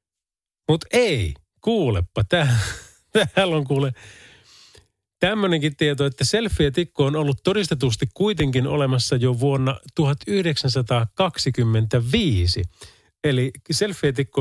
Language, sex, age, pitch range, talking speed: Finnish, male, 30-49, 105-150 Hz, 85 wpm